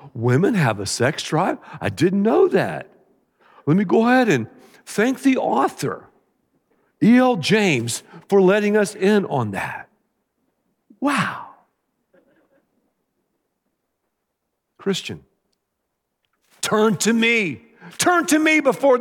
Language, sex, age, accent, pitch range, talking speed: English, male, 50-69, American, 195-260 Hz, 105 wpm